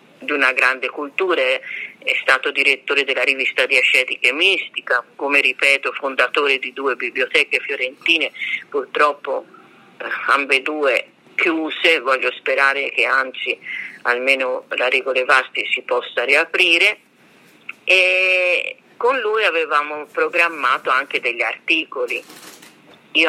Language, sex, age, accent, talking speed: Italian, female, 40-59, native, 110 wpm